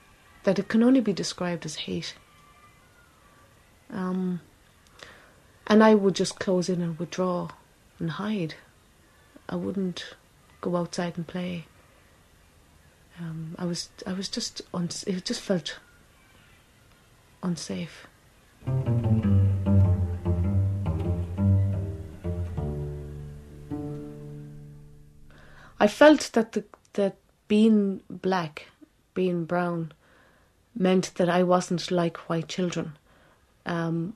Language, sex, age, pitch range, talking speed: English, female, 30-49, 150-190 Hz, 95 wpm